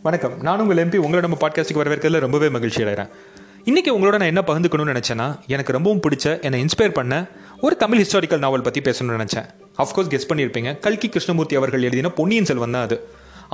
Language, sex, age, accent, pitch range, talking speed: Tamil, male, 30-49, native, 130-185 Hz, 165 wpm